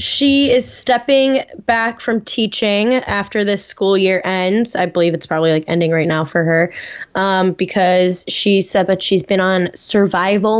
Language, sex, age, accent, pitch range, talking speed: English, female, 10-29, American, 180-210 Hz, 170 wpm